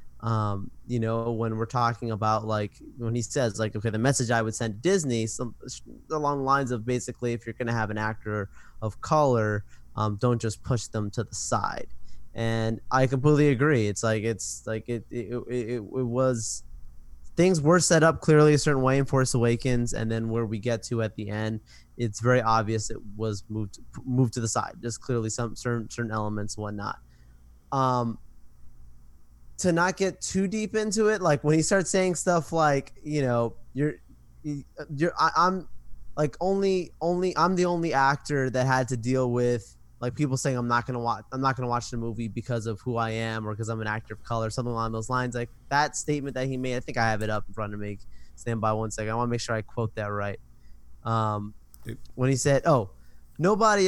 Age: 20-39